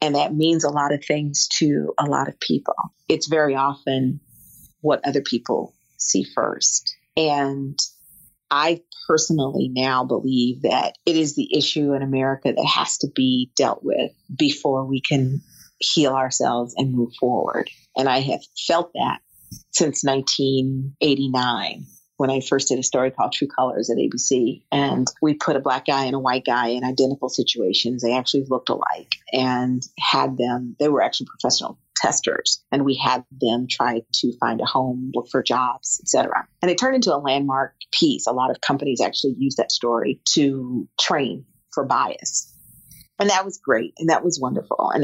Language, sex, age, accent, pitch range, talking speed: English, female, 40-59, American, 125-150 Hz, 175 wpm